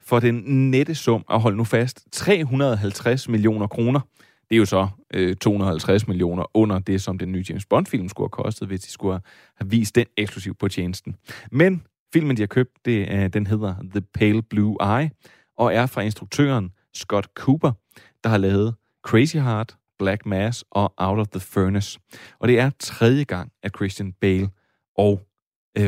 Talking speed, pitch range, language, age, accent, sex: 180 wpm, 100-130 Hz, Danish, 30-49, native, male